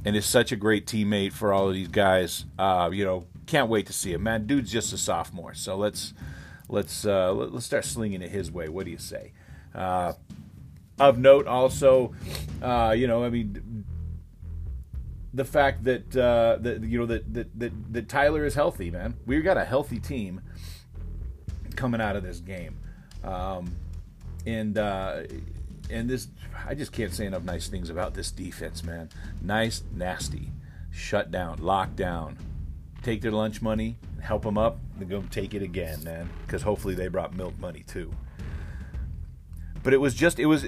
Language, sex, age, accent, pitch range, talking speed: English, male, 40-59, American, 85-115 Hz, 175 wpm